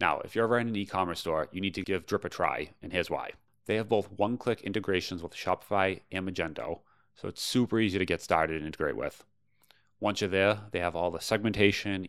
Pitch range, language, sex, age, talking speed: 90-110 Hz, English, male, 30-49, 230 wpm